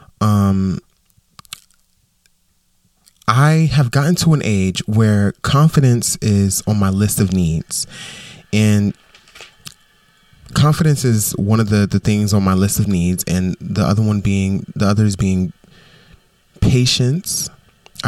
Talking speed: 125 wpm